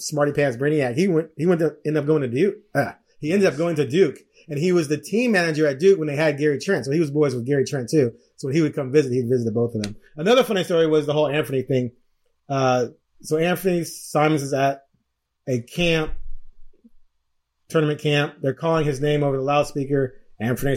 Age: 30-49